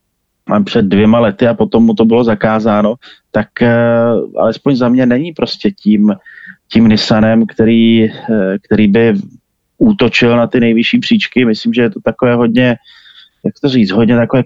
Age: 30-49